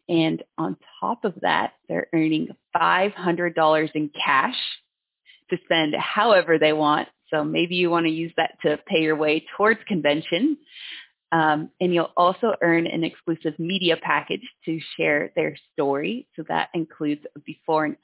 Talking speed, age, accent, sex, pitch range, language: 155 wpm, 30-49, American, female, 155-180 Hz, English